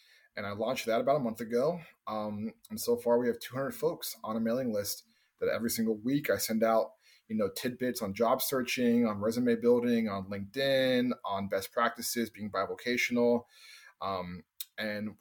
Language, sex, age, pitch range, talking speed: English, male, 20-39, 110-135 Hz, 180 wpm